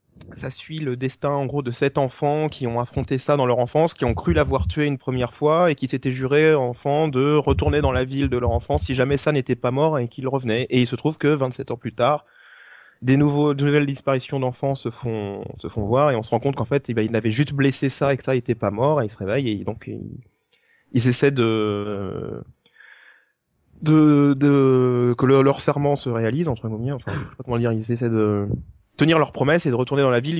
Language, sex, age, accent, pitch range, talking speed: French, male, 20-39, French, 115-145 Hz, 245 wpm